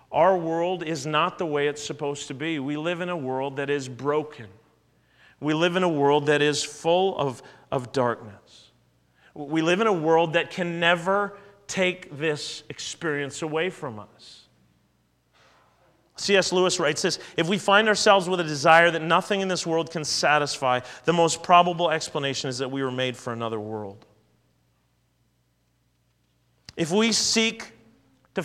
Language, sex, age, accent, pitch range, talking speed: English, male, 40-59, American, 125-175 Hz, 160 wpm